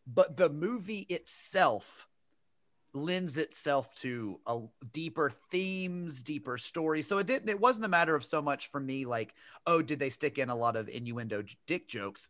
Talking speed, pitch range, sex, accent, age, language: 175 wpm, 120-165 Hz, male, American, 30-49, English